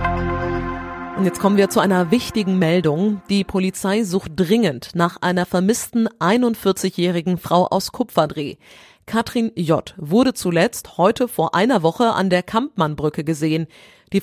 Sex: female